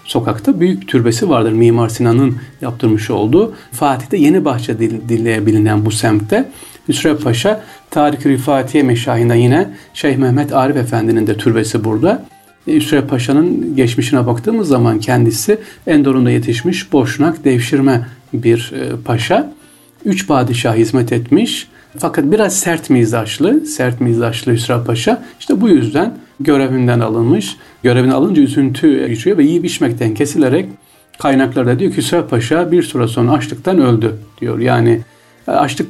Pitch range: 115-155 Hz